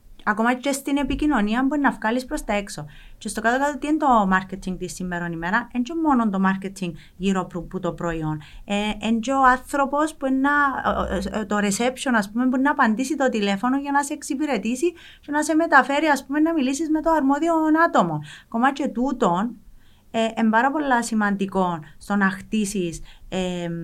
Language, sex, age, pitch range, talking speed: Greek, female, 30-49, 185-260 Hz, 165 wpm